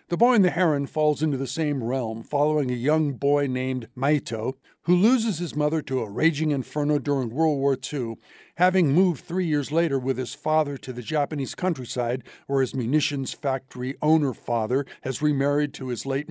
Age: 60-79